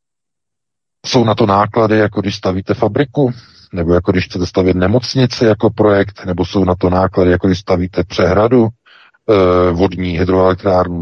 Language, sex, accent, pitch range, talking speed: Czech, male, native, 90-105 Hz, 145 wpm